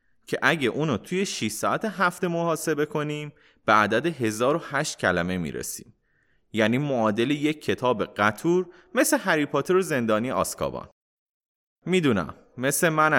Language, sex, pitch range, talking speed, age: Persian, male, 125-185 Hz, 125 wpm, 30-49